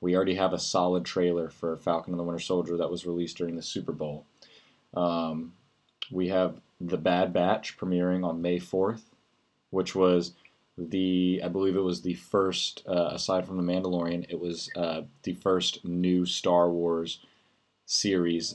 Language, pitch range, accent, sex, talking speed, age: English, 85-95 Hz, American, male, 170 wpm, 30-49